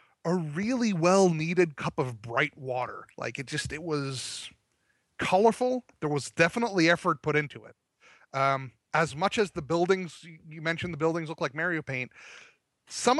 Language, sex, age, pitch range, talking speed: English, male, 30-49, 125-180 Hz, 160 wpm